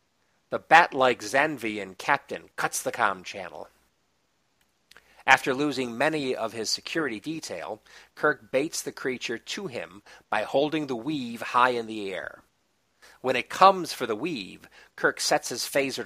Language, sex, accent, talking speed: English, male, American, 145 wpm